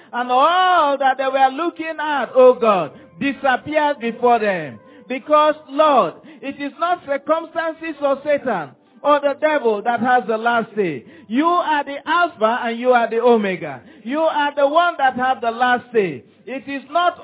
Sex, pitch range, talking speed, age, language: male, 245-300 Hz, 170 wpm, 50-69, English